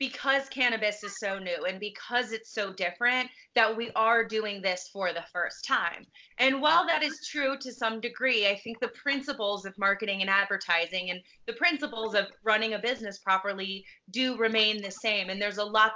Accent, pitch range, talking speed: American, 190-235 Hz, 190 wpm